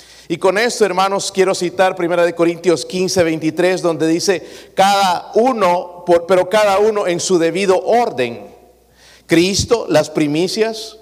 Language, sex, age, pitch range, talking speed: Spanish, male, 50-69, 165-205 Hz, 135 wpm